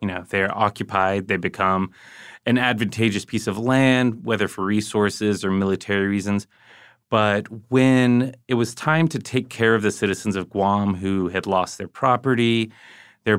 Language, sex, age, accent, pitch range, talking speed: English, male, 30-49, American, 100-120 Hz, 160 wpm